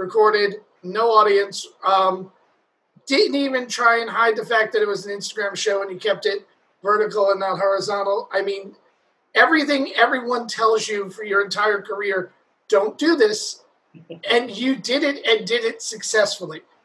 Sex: male